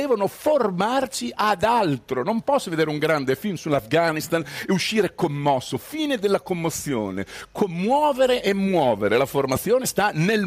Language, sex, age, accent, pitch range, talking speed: Italian, male, 50-69, native, 135-210 Hz, 140 wpm